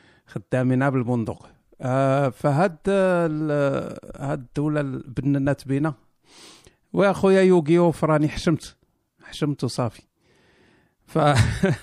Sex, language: male, Arabic